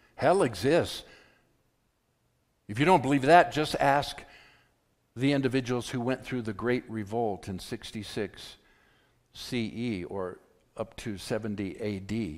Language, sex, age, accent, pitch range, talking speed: English, male, 60-79, American, 95-125 Hz, 120 wpm